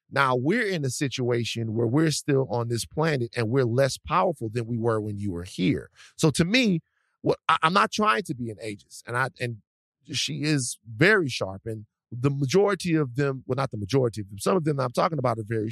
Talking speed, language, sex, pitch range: 230 wpm, English, male, 120-165 Hz